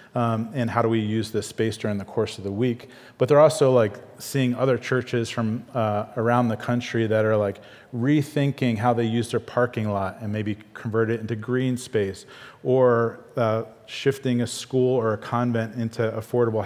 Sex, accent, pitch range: male, American, 110-130 Hz